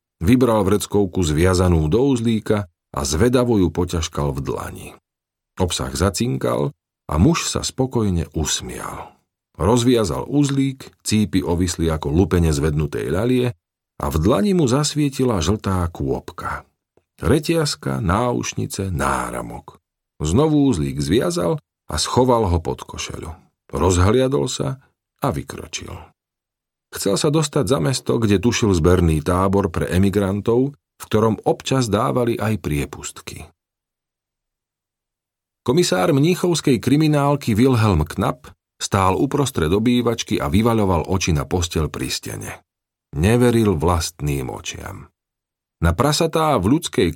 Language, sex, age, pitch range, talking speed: Slovak, male, 50-69, 85-125 Hz, 110 wpm